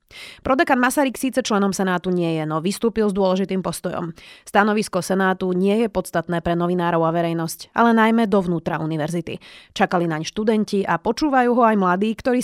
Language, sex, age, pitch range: Slovak, female, 30-49, 175-225 Hz